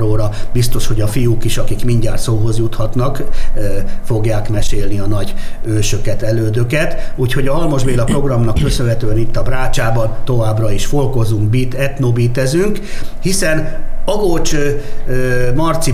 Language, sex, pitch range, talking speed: Hungarian, male, 110-145 Hz, 120 wpm